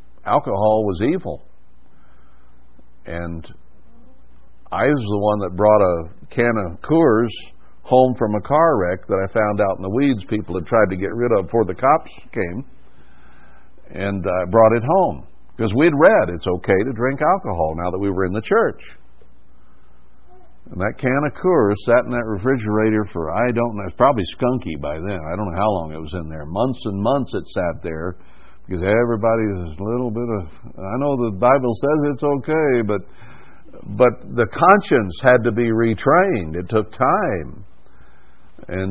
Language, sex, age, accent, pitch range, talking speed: English, male, 60-79, American, 90-120 Hz, 180 wpm